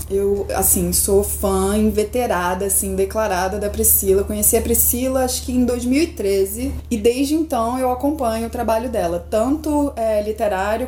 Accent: Brazilian